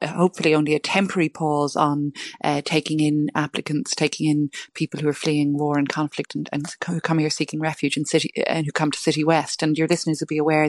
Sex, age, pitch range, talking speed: female, 30-49, 150-170 Hz, 220 wpm